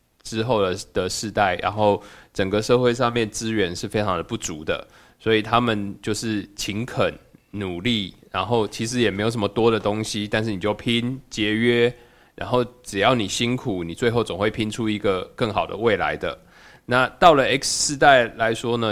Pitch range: 100-115 Hz